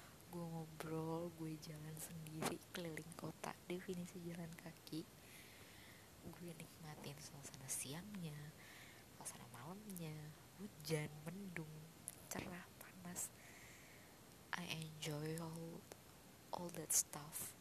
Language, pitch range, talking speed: Indonesian, 150-170 Hz, 90 wpm